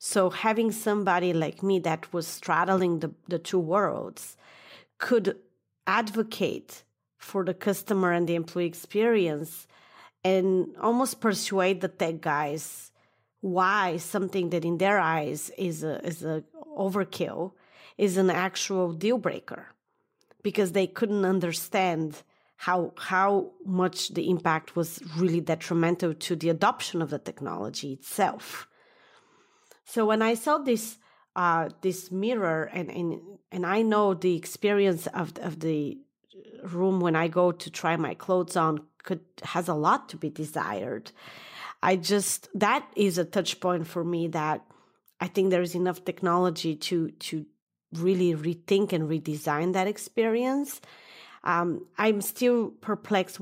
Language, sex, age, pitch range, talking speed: English, female, 30-49, 170-200 Hz, 140 wpm